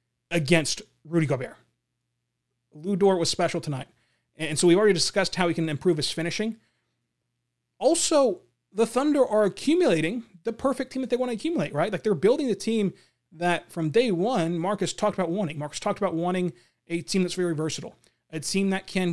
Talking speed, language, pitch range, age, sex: 180 wpm, English, 150-220 Hz, 30-49, male